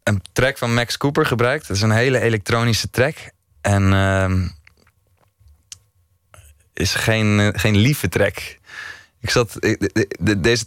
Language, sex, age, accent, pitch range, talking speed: Dutch, male, 20-39, Dutch, 100-115 Hz, 150 wpm